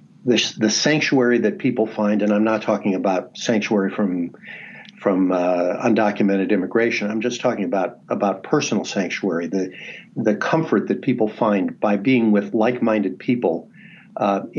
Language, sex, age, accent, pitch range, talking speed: English, male, 50-69, American, 105-130 Hz, 150 wpm